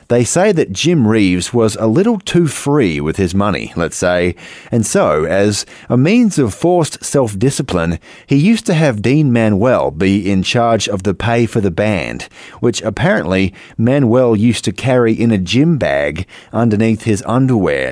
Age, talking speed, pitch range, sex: 30-49, 170 wpm, 95-130 Hz, male